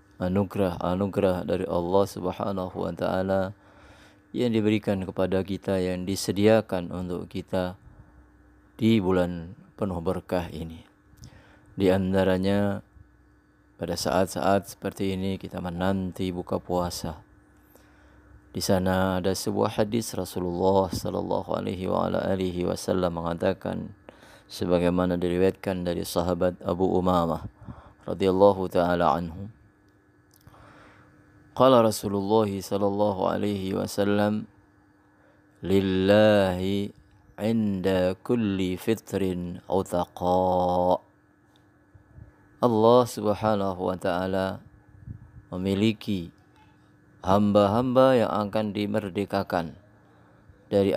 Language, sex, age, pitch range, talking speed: Indonesian, male, 30-49, 90-100 Hz, 75 wpm